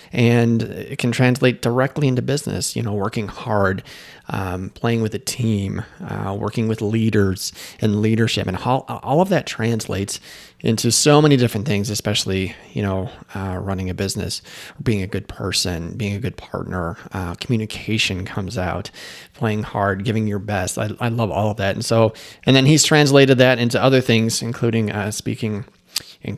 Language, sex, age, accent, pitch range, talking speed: English, male, 30-49, American, 105-140 Hz, 175 wpm